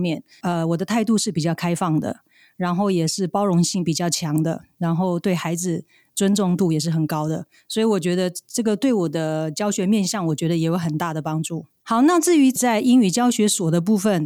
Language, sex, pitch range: Chinese, female, 170-220 Hz